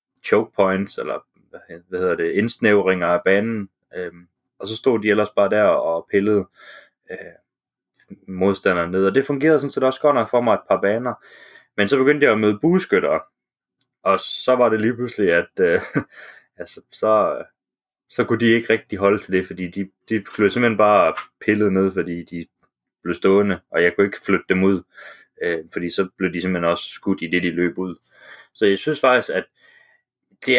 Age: 20-39